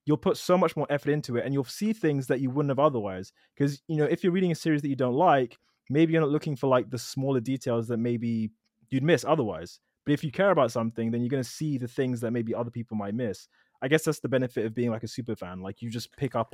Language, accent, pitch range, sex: English, British, 115-150 Hz, male